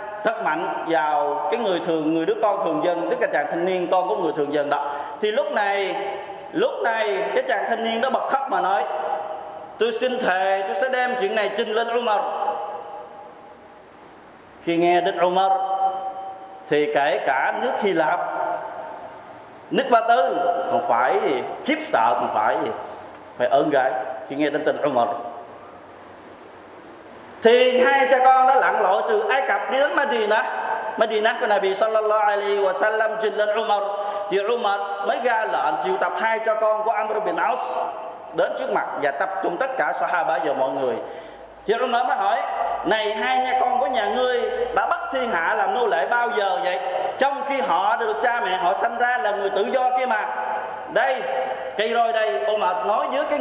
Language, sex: Vietnamese, male